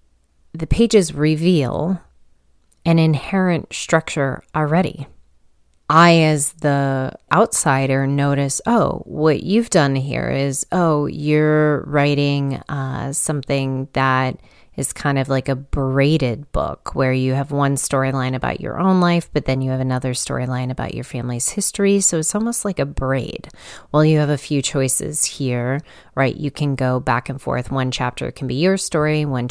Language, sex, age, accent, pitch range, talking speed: English, female, 30-49, American, 130-155 Hz, 155 wpm